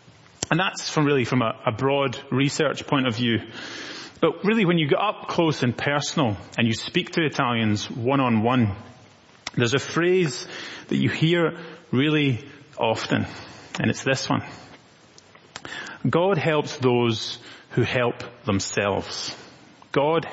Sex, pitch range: male, 120-150 Hz